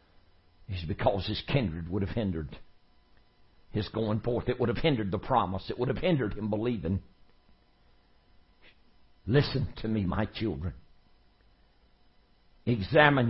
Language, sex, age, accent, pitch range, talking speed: English, male, 60-79, American, 90-125 Hz, 125 wpm